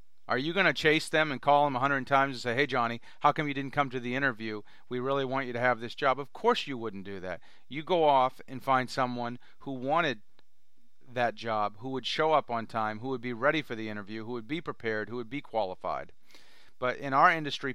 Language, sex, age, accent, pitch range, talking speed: English, male, 40-59, American, 115-145 Hz, 245 wpm